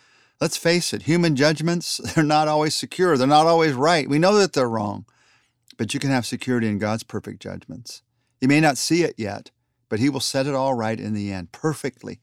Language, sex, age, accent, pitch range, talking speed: English, male, 40-59, American, 115-135 Hz, 215 wpm